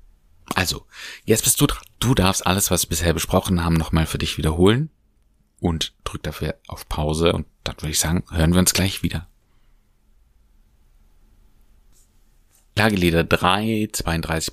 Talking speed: 145 wpm